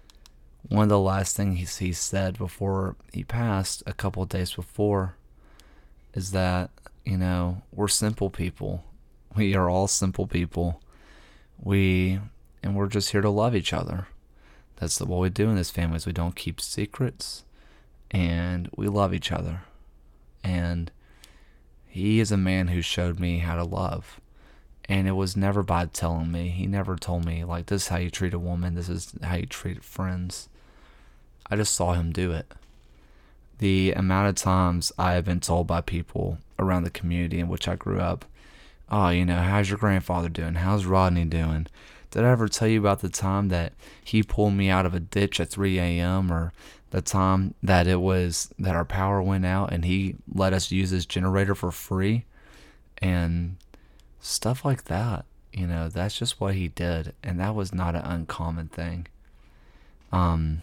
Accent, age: American, 30-49